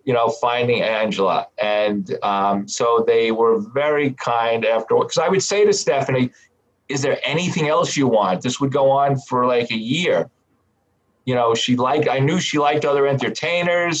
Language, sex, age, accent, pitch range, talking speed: English, male, 40-59, American, 110-135 Hz, 180 wpm